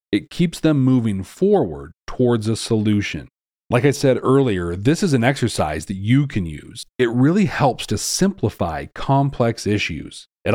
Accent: American